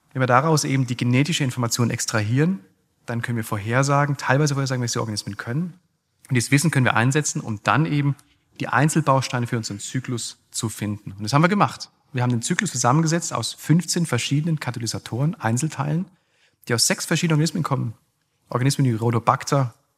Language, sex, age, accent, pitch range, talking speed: German, male, 40-59, German, 120-150 Hz, 170 wpm